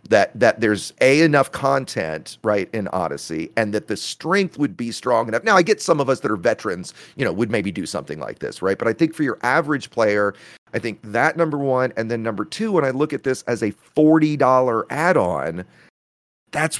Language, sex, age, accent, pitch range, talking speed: English, male, 40-59, American, 115-160 Hz, 220 wpm